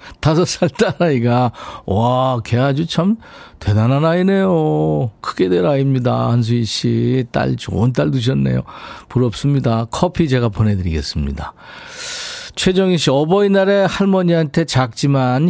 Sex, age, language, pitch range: male, 40-59, Korean, 110-165 Hz